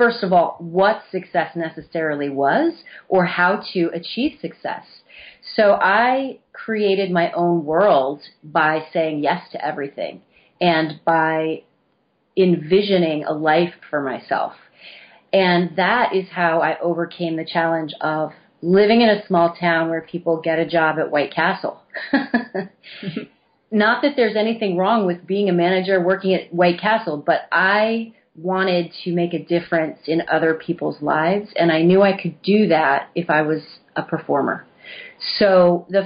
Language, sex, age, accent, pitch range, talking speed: English, female, 30-49, American, 160-195 Hz, 150 wpm